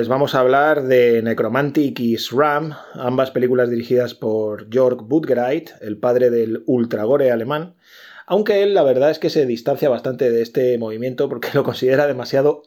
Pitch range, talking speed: 125-155 Hz, 165 wpm